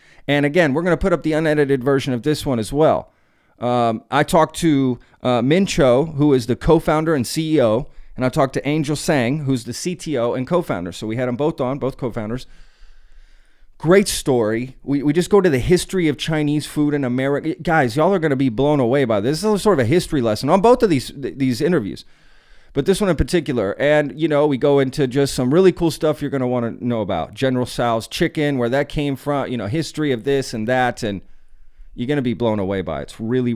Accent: American